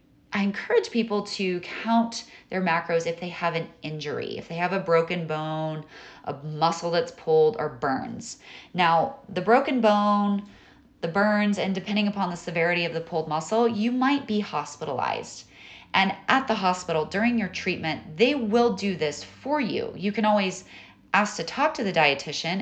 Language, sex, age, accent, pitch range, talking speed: English, female, 30-49, American, 160-210 Hz, 170 wpm